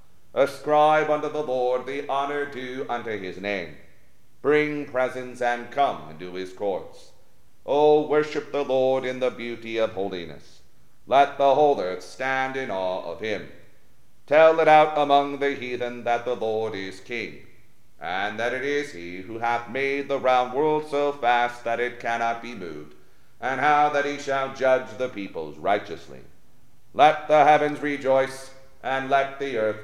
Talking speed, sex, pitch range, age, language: 165 wpm, male, 115-145 Hz, 40-59, English